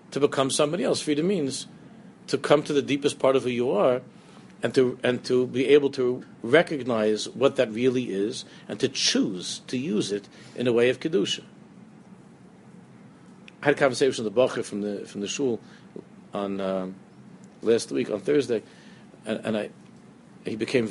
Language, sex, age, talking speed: English, male, 50-69, 180 wpm